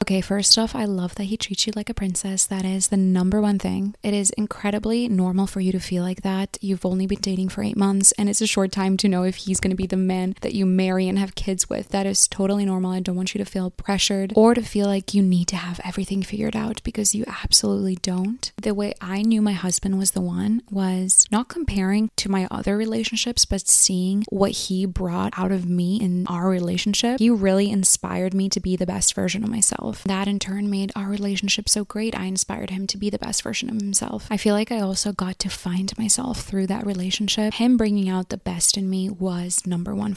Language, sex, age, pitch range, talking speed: English, female, 20-39, 190-215 Hz, 240 wpm